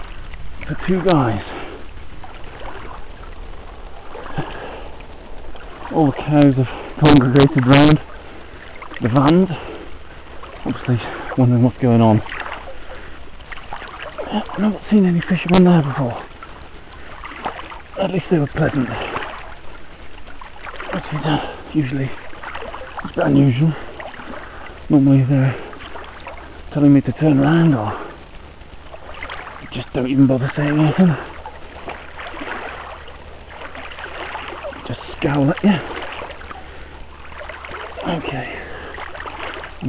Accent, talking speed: British, 80 wpm